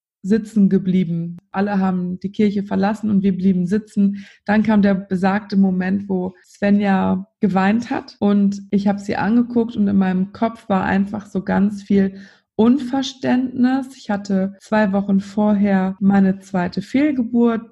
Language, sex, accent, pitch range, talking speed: German, female, German, 195-230 Hz, 145 wpm